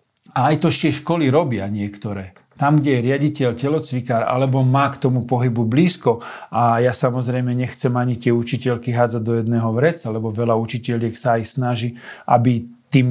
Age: 40-59